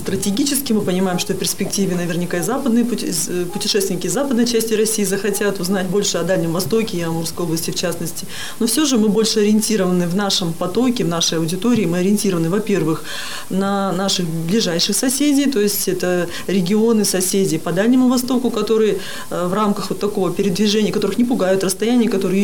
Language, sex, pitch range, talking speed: Russian, female, 175-215 Hz, 170 wpm